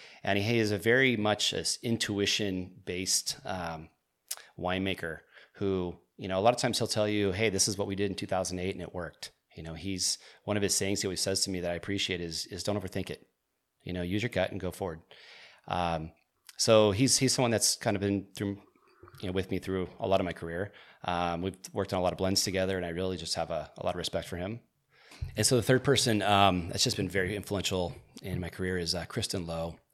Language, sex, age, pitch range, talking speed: English, male, 30-49, 90-110 Hz, 240 wpm